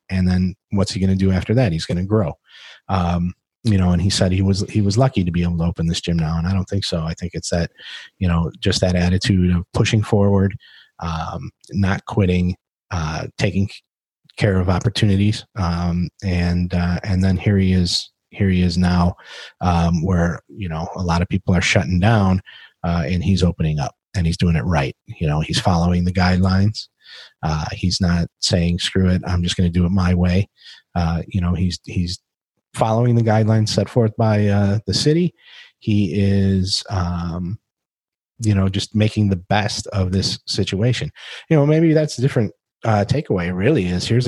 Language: English